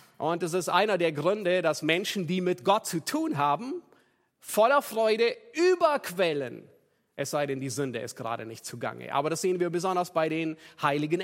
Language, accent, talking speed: German, German, 180 wpm